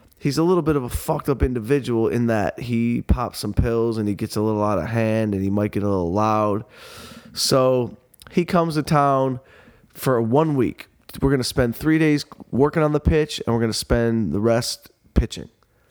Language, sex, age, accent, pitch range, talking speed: English, male, 20-39, American, 110-135 Hz, 210 wpm